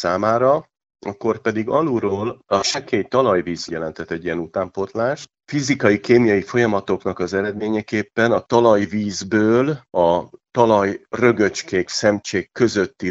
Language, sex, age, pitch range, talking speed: Hungarian, male, 40-59, 90-115 Hz, 100 wpm